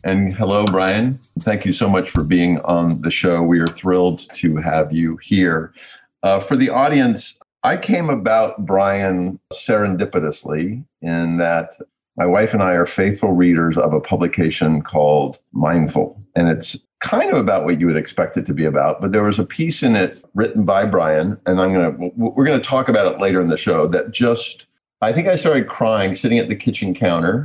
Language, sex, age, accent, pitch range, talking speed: English, male, 50-69, American, 85-110 Hz, 195 wpm